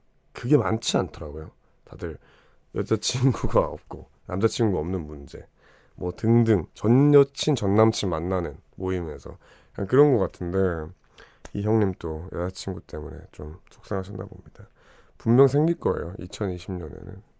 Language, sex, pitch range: Korean, male, 90-110 Hz